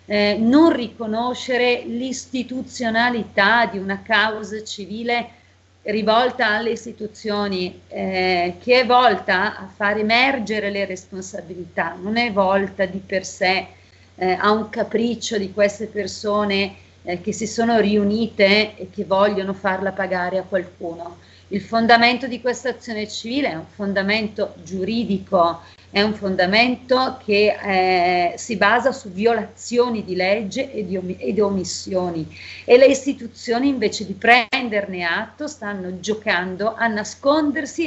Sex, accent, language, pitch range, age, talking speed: female, native, Italian, 195-230 Hz, 40-59, 125 wpm